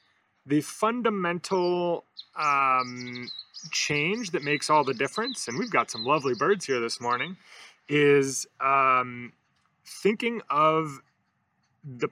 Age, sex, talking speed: 30-49, male, 115 wpm